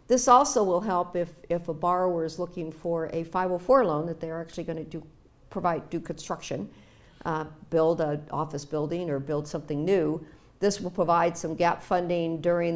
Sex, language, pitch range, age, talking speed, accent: female, English, 160-195 Hz, 50-69, 180 wpm, American